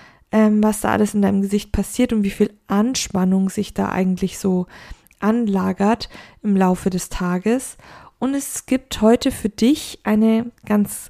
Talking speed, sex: 150 wpm, female